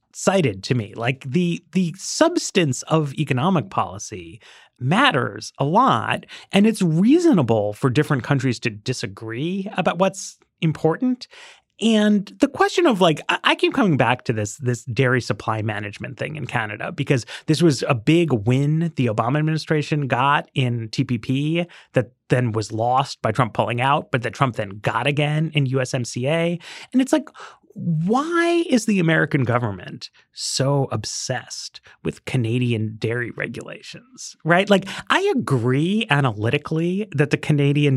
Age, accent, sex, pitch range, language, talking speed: 30-49, American, male, 125-180 Hz, English, 145 wpm